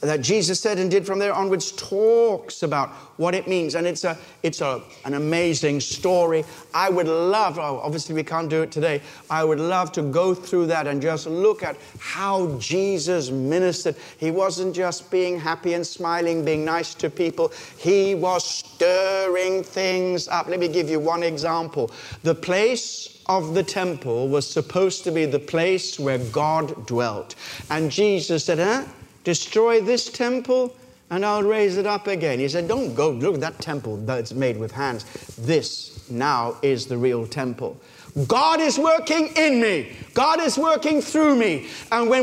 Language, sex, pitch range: English, male, 160-240 Hz